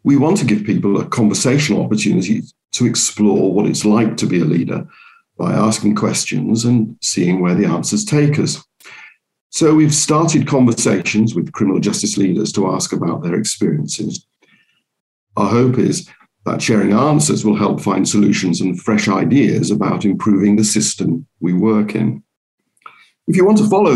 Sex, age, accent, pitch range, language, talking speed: male, 50-69, British, 105-135 Hz, English, 165 wpm